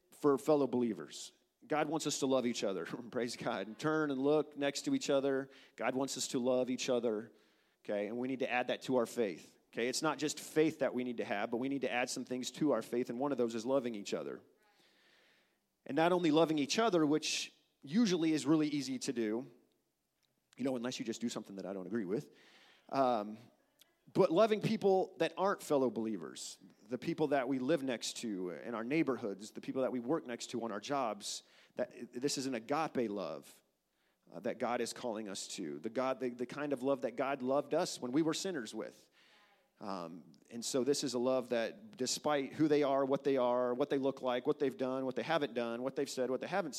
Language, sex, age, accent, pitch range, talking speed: English, male, 40-59, American, 120-150 Hz, 230 wpm